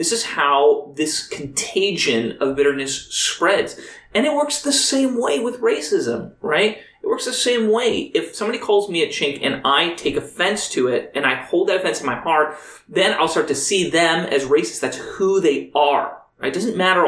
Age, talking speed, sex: 30-49, 205 wpm, male